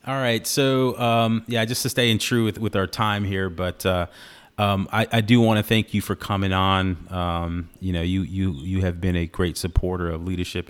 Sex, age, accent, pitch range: male, 30-49, American, 85-100 Hz